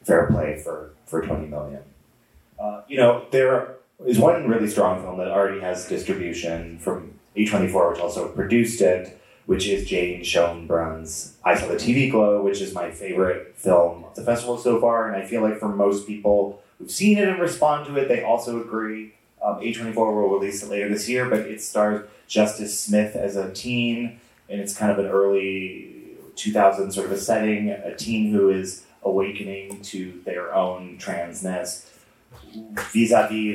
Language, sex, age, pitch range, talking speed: English, male, 30-49, 90-115 Hz, 175 wpm